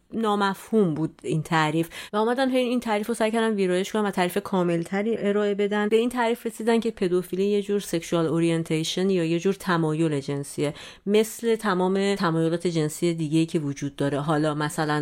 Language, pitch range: Persian, 160-200 Hz